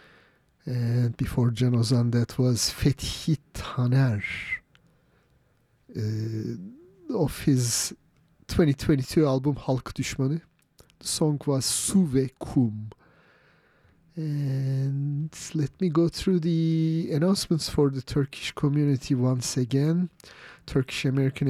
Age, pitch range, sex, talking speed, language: 40-59, 130-170 Hz, male, 100 wpm, English